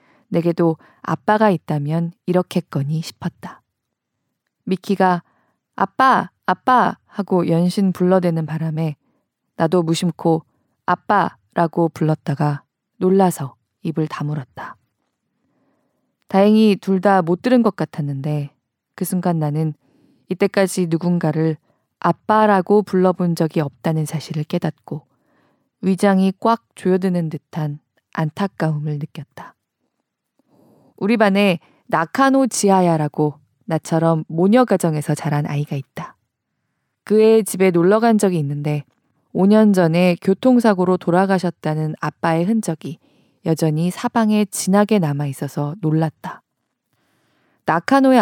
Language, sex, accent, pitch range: Korean, female, native, 155-195 Hz